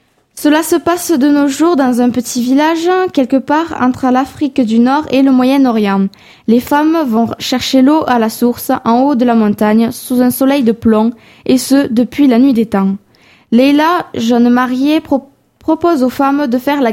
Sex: female